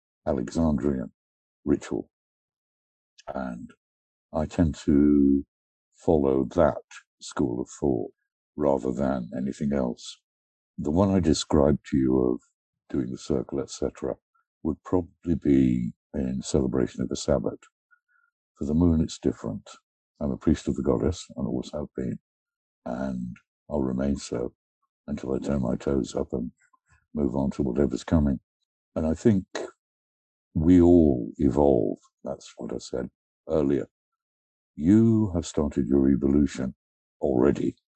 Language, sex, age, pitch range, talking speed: English, male, 60-79, 65-90 Hz, 130 wpm